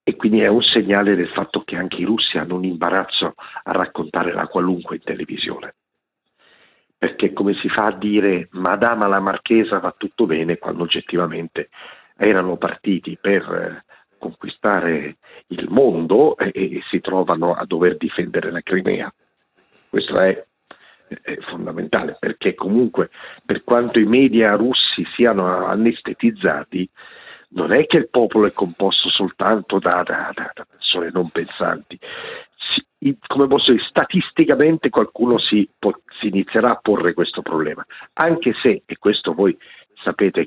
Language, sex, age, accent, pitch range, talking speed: Italian, male, 50-69, native, 95-125 Hz, 140 wpm